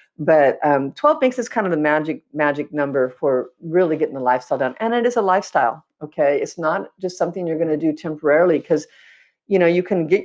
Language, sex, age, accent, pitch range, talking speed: English, female, 50-69, American, 145-190 Hz, 220 wpm